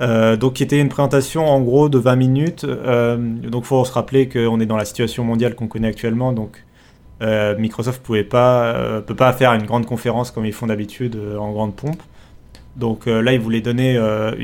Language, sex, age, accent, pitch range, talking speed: French, male, 30-49, French, 110-130 Hz, 215 wpm